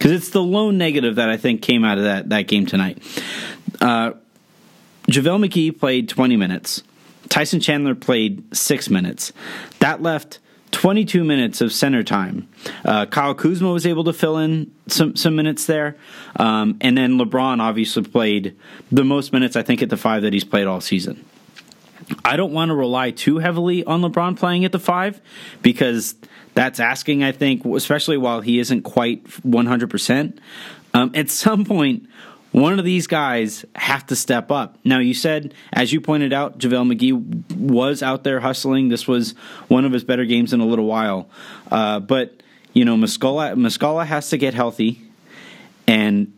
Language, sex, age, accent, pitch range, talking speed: English, male, 30-49, American, 120-170 Hz, 175 wpm